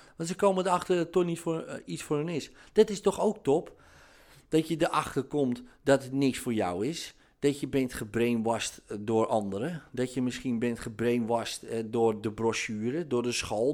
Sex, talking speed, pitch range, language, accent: male, 205 wpm, 115-165 Hz, Dutch, Dutch